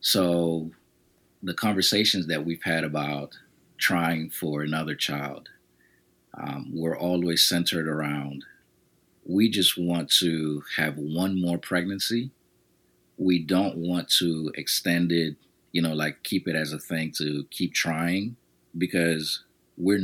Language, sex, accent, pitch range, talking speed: English, male, American, 75-90 Hz, 130 wpm